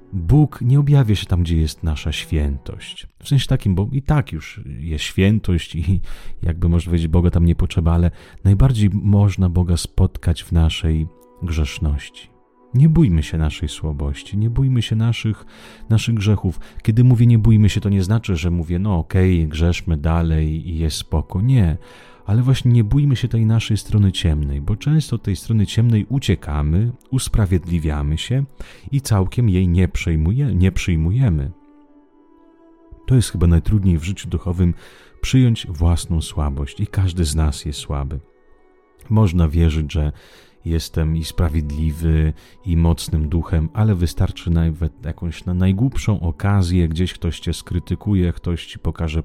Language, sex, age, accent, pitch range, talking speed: Italian, male, 30-49, Polish, 80-110 Hz, 150 wpm